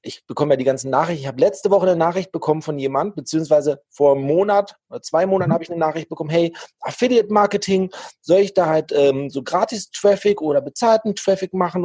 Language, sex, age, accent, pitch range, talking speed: German, male, 40-59, German, 155-190 Hz, 210 wpm